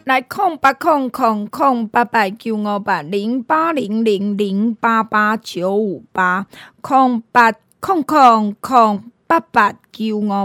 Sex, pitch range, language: female, 210-255 Hz, Chinese